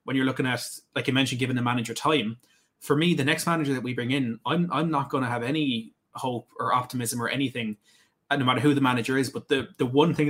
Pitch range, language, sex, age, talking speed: 120-145 Hz, English, male, 20-39, 250 wpm